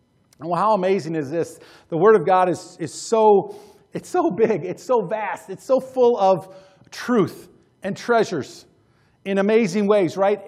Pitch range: 160-205 Hz